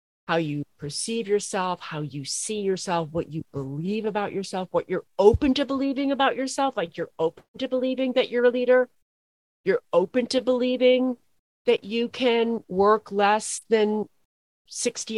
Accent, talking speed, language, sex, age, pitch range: American, 160 wpm, English, female, 40-59, 165-230 Hz